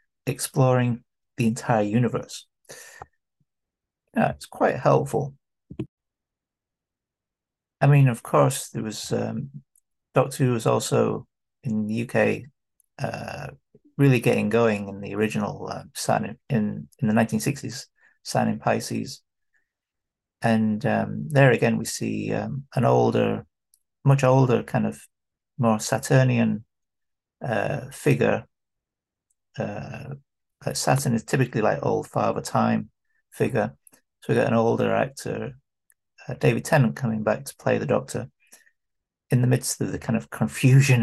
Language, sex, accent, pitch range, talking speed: English, male, British, 110-130 Hz, 125 wpm